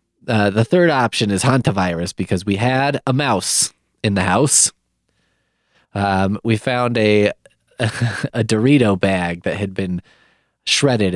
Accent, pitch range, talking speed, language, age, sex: American, 95-135 Hz, 140 wpm, English, 20-39, male